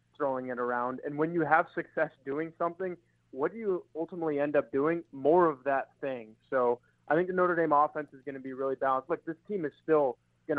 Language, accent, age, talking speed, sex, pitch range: English, American, 20-39, 225 wpm, male, 130-155 Hz